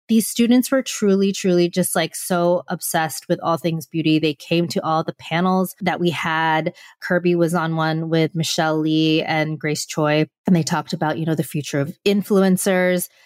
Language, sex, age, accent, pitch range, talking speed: English, female, 20-39, American, 160-195 Hz, 190 wpm